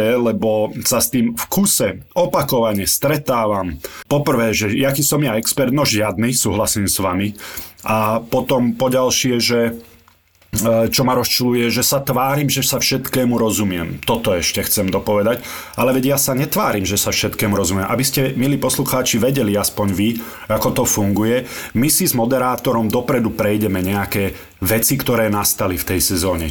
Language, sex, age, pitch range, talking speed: Slovak, male, 30-49, 100-130 Hz, 160 wpm